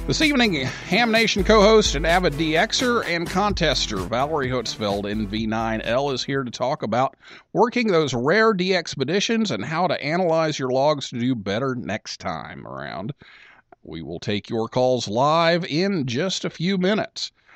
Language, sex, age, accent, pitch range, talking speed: English, male, 50-69, American, 115-180 Hz, 155 wpm